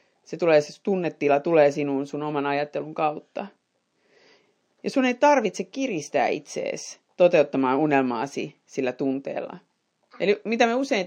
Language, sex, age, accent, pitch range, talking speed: Finnish, female, 30-49, native, 150-230 Hz, 130 wpm